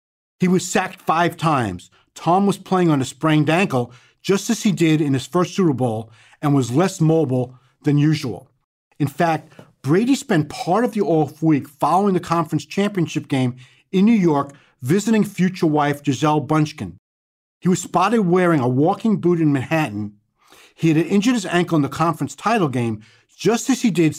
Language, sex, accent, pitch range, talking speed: English, male, American, 135-180 Hz, 180 wpm